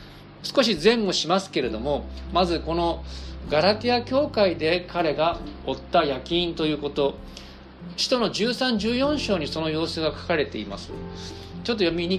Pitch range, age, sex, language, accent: 135-205 Hz, 50-69, male, Japanese, native